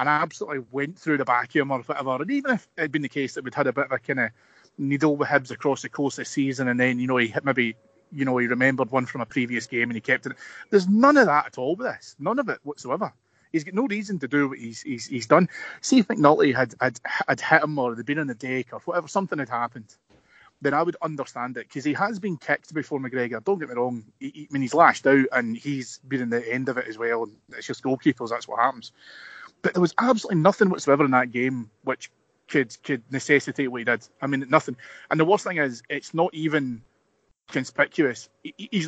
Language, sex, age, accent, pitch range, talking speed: English, male, 30-49, British, 125-155 Hz, 255 wpm